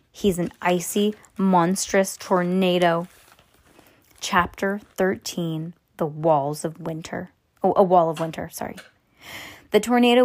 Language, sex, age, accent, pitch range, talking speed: English, female, 20-39, American, 170-220 Hz, 110 wpm